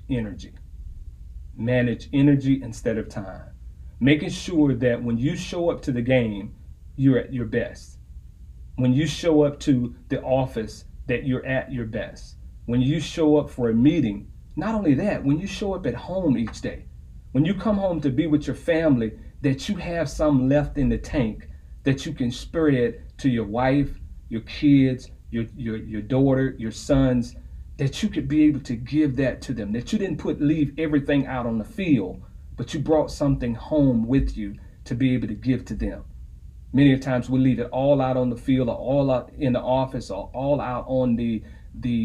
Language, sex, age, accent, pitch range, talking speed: English, male, 40-59, American, 110-140 Hz, 200 wpm